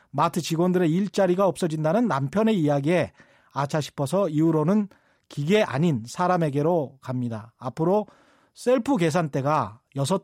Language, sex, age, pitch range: Korean, male, 40-59, 155-205 Hz